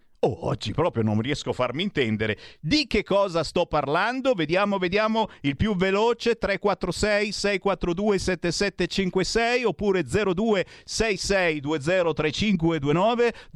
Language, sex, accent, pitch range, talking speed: Italian, male, native, 125-205 Hz, 90 wpm